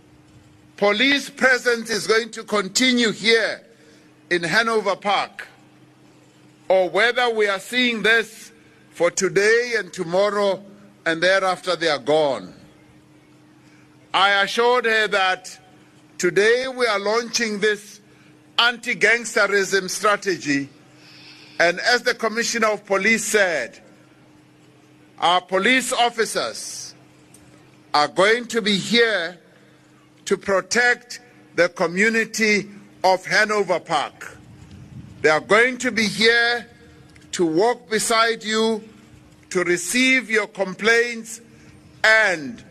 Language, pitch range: English, 180-230 Hz